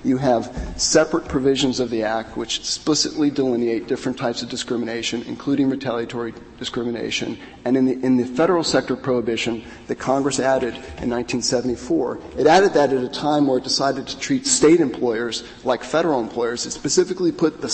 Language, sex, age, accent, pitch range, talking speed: English, male, 40-59, American, 120-145 Hz, 170 wpm